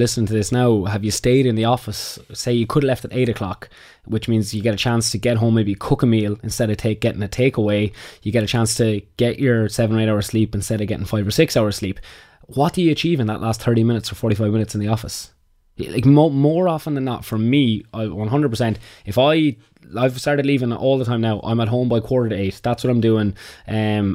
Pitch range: 110-130 Hz